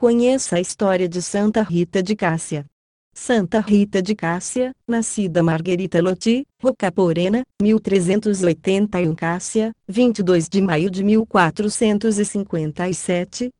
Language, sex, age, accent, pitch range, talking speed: Portuguese, female, 30-49, Brazilian, 175-220 Hz, 105 wpm